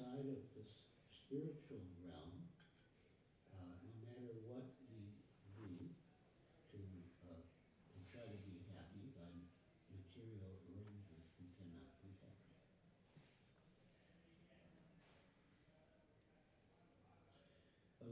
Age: 60-79